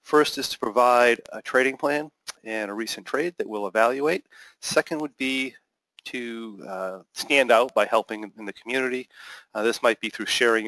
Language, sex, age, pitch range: English, male, 40-59, 105-120 Hz